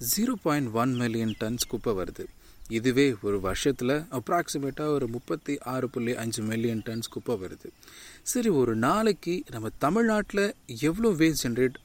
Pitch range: 120-160 Hz